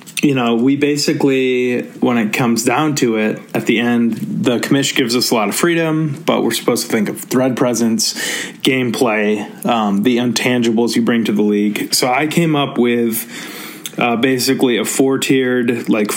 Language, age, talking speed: English, 30-49, 180 wpm